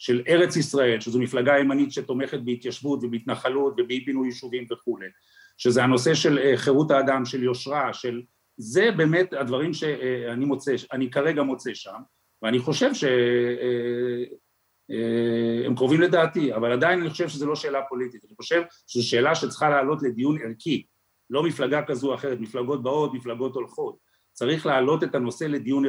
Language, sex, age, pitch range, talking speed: Hebrew, male, 50-69, 125-160 Hz, 150 wpm